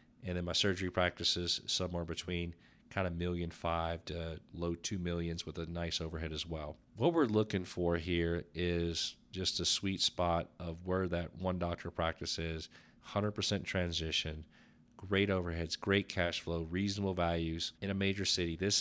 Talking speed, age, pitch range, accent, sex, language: 165 wpm, 40-59, 85-100 Hz, American, male, English